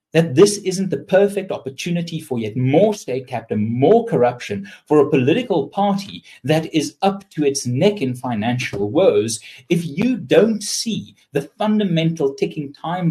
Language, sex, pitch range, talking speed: English, male, 125-200 Hz, 155 wpm